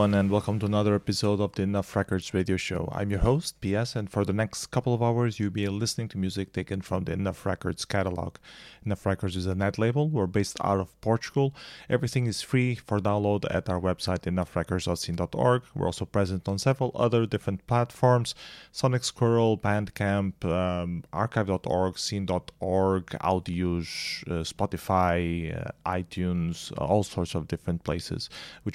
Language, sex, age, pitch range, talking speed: English, male, 30-49, 90-110 Hz, 165 wpm